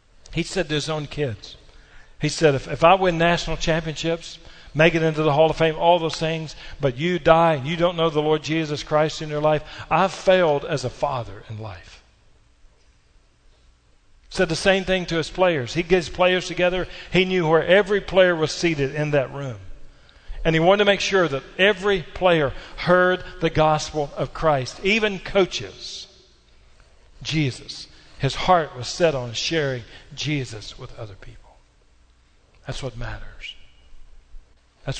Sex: male